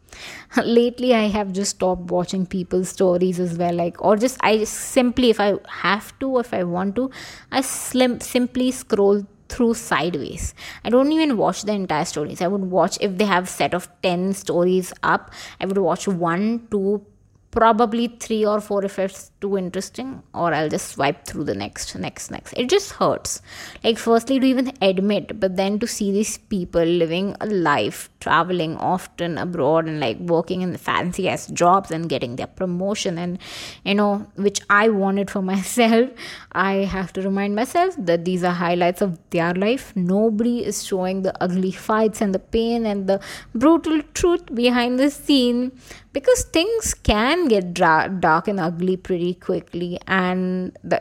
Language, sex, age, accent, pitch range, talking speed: Hindi, female, 20-39, native, 180-230 Hz, 175 wpm